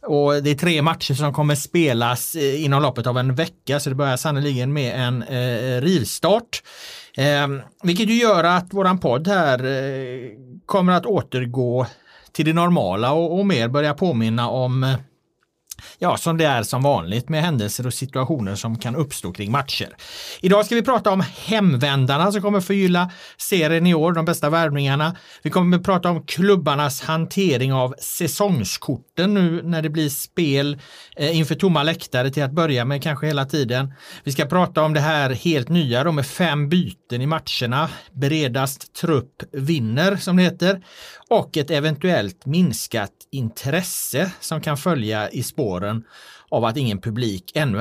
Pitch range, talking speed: 130-175 Hz, 165 wpm